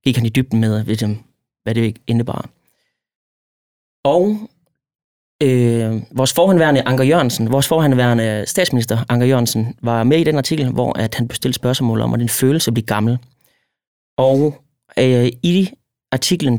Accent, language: native, Danish